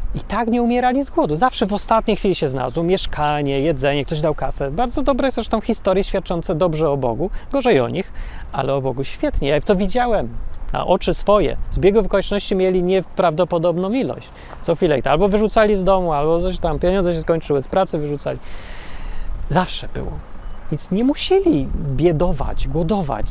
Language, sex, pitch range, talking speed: Polish, male, 140-190 Hz, 175 wpm